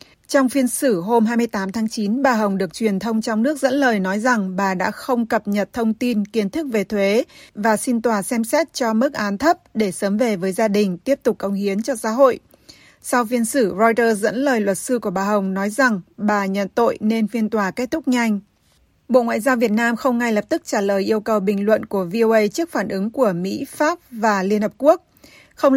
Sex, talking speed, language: female, 235 wpm, Vietnamese